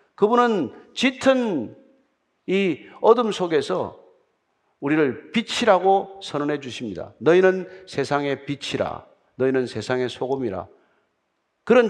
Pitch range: 150-210 Hz